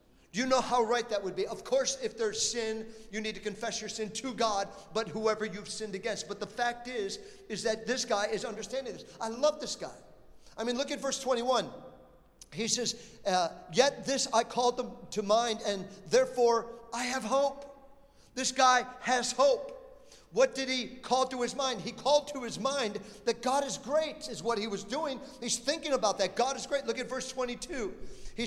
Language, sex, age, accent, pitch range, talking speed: English, male, 50-69, American, 220-270 Hz, 205 wpm